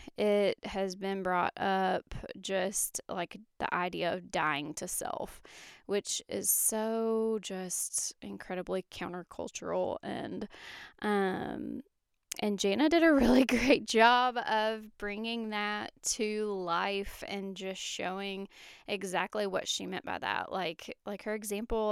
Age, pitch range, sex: 10-29, 190-225 Hz, female